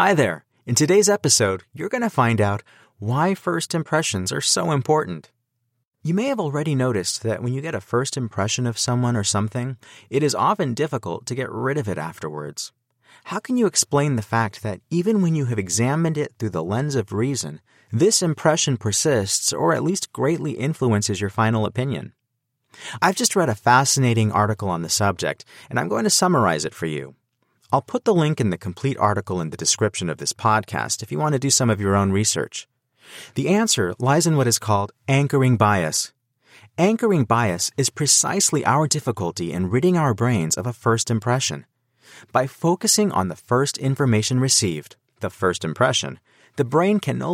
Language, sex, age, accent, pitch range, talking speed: English, male, 30-49, American, 105-150 Hz, 190 wpm